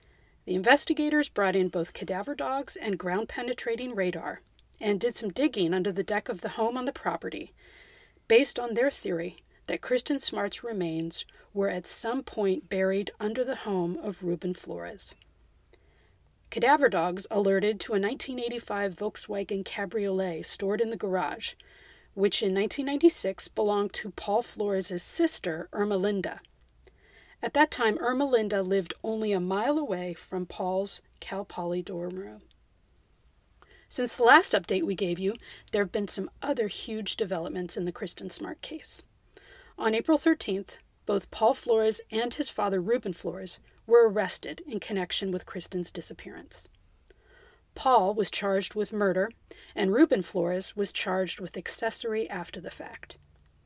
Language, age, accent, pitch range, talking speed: English, 40-59, American, 190-235 Hz, 150 wpm